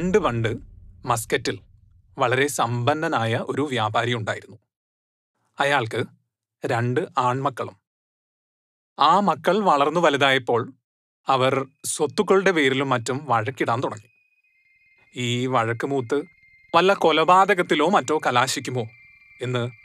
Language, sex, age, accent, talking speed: Malayalam, male, 30-49, native, 80 wpm